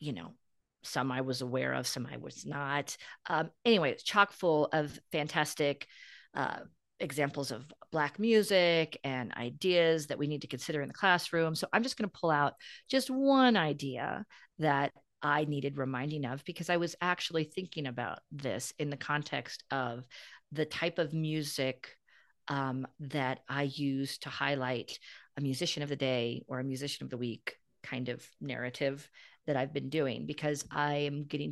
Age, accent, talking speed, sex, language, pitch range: 40-59, American, 175 wpm, female, English, 135-165 Hz